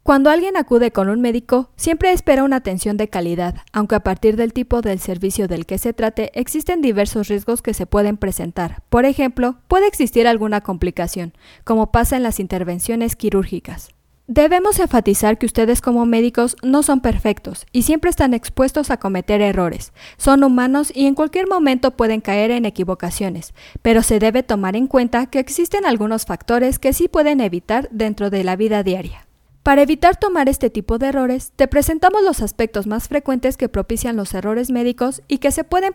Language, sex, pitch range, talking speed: Spanish, female, 205-275 Hz, 180 wpm